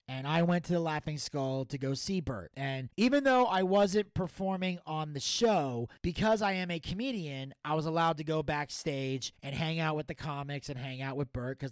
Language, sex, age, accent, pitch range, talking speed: English, male, 30-49, American, 135-165 Hz, 220 wpm